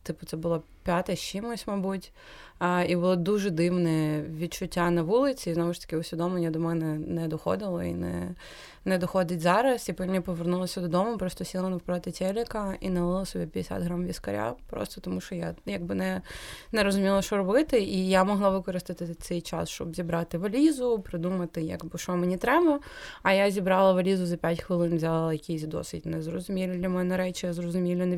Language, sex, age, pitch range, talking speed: Ukrainian, female, 20-39, 165-190 Hz, 180 wpm